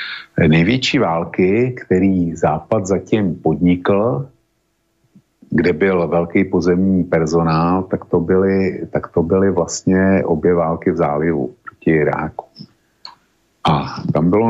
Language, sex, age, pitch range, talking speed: Slovak, male, 50-69, 85-95 Hz, 110 wpm